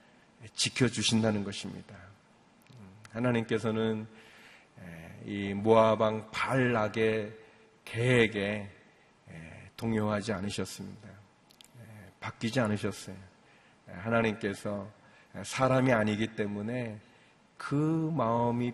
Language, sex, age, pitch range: Korean, male, 40-59, 110-150 Hz